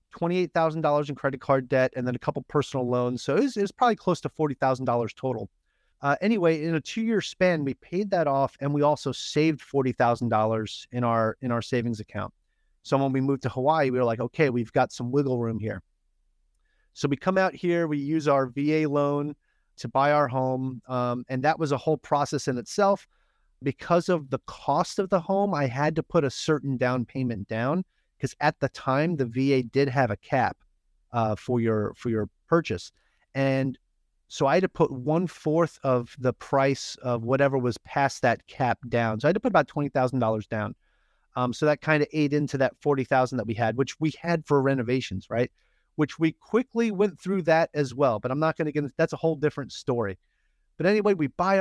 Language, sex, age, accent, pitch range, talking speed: English, male, 30-49, American, 125-160 Hz, 205 wpm